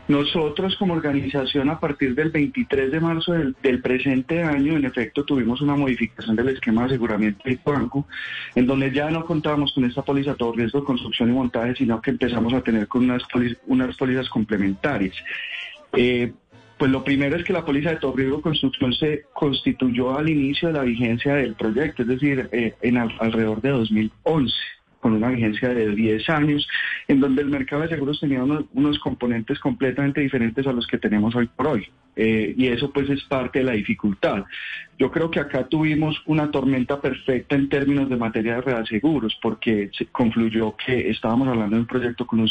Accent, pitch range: Colombian, 120-145 Hz